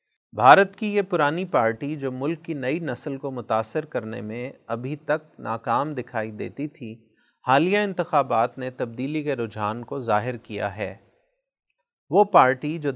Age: 30-49